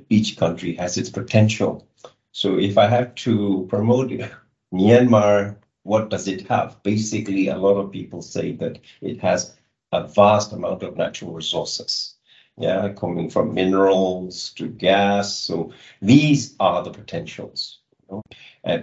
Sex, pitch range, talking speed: male, 95-110 Hz, 145 wpm